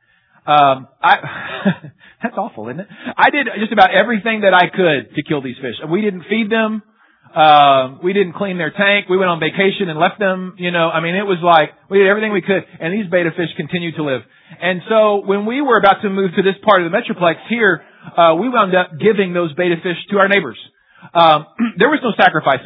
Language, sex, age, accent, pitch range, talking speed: English, male, 40-59, American, 155-215 Hz, 220 wpm